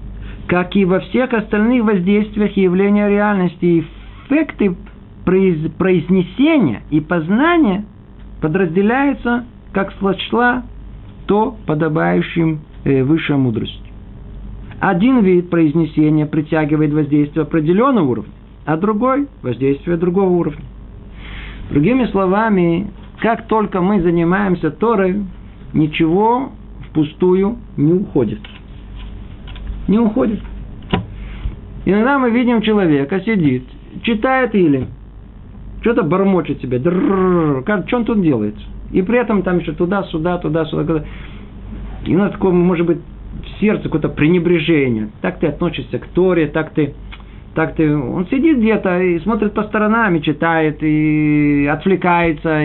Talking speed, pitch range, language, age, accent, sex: 110 wpm, 135-195 Hz, Russian, 50-69, native, male